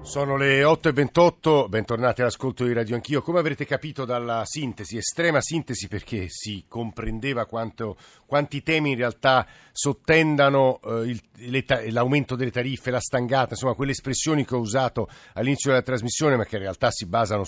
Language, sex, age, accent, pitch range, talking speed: Italian, male, 50-69, native, 115-140 Hz, 160 wpm